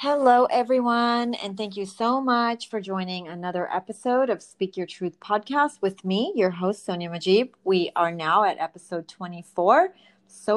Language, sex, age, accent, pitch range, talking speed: English, female, 30-49, American, 180-225 Hz, 165 wpm